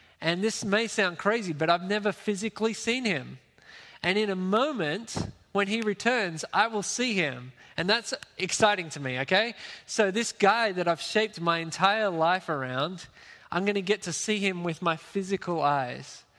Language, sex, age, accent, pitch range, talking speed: English, male, 20-39, Australian, 160-200 Hz, 180 wpm